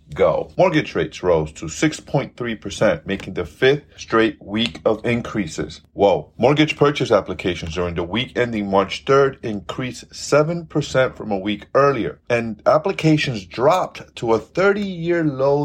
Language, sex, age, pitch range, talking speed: English, male, 30-49, 105-160 Hz, 140 wpm